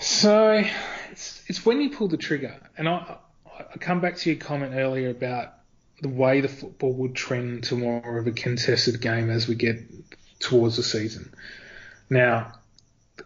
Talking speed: 170 wpm